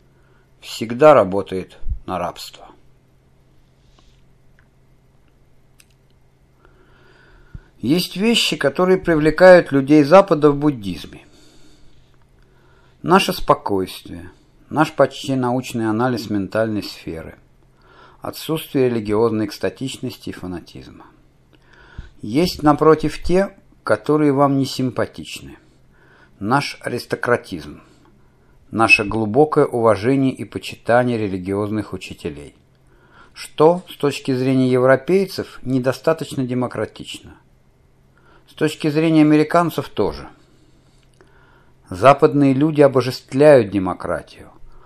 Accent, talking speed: native, 75 wpm